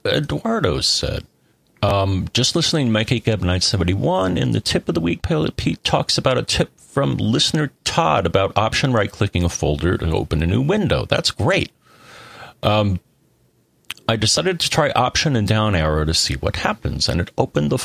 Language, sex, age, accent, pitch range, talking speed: English, male, 40-59, American, 90-125 Hz, 180 wpm